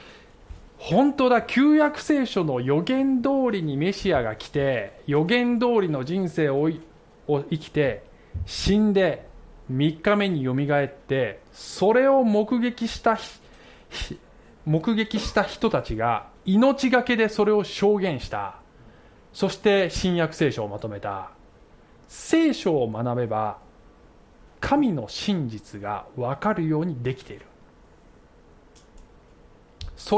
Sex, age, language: male, 20-39, Japanese